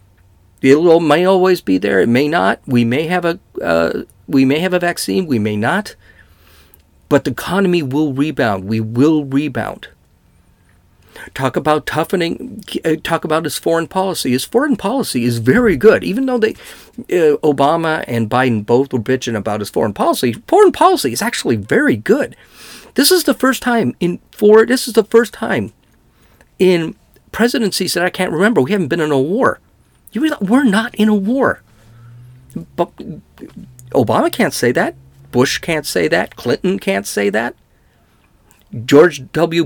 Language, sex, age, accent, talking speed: English, male, 40-59, American, 160 wpm